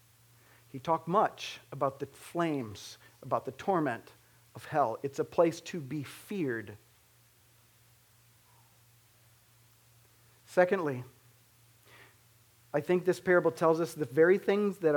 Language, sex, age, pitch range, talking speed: English, male, 40-59, 120-165 Hz, 110 wpm